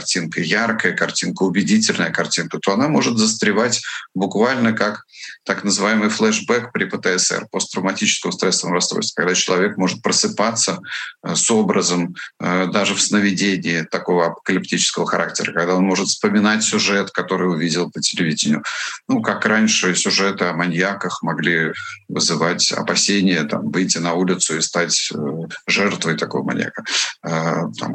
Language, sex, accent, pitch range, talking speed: Russian, male, native, 90-135 Hz, 125 wpm